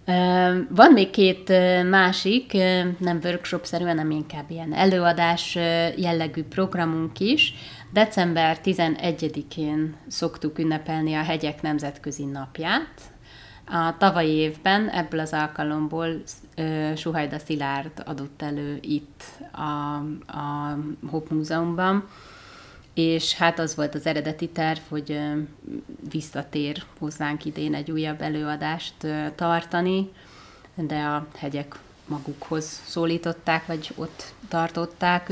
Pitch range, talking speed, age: 150-165 Hz, 100 wpm, 30-49